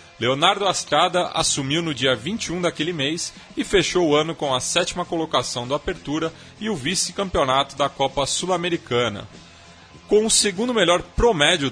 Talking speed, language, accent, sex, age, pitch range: 150 wpm, Portuguese, Brazilian, male, 30-49, 125-175 Hz